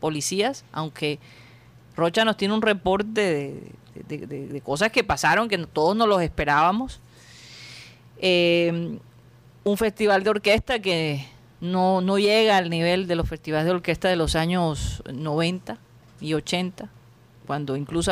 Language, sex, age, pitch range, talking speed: Spanish, female, 40-59, 150-200 Hz, 140 wpm